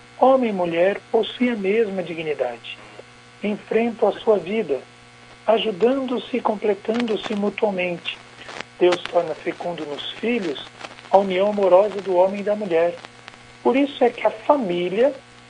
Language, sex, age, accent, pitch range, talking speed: Portuguese, male, 60-79, Brazilian, 150-220 Hz, 130 wpm